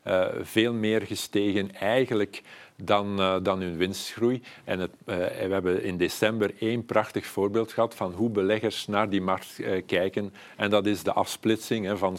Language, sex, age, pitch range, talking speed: Dutch, male, 50-69, 95-110 Hz, 165 wpm